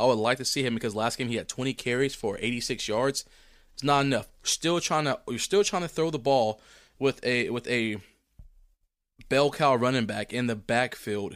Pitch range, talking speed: 110-135 Hz, 215 wpm